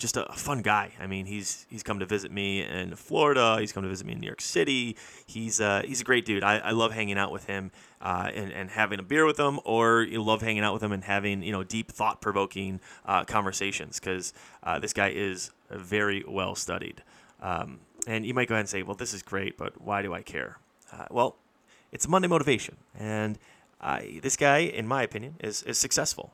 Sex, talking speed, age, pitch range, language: male, 230 wpm, 30-49, 100-120 Hz, English